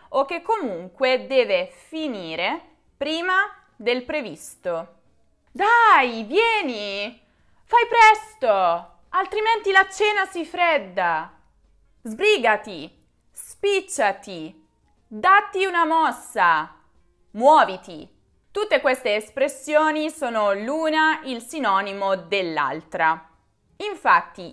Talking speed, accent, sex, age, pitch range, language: 80 wpm, native, female, 20-39, 190-310 Hz, Italian